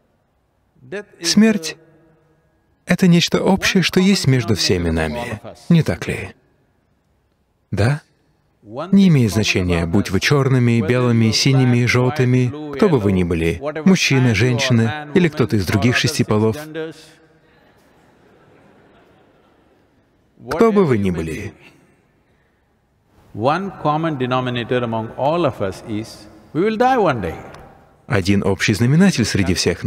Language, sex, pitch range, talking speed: Russian, male, 100-155 Hz, 90 wpm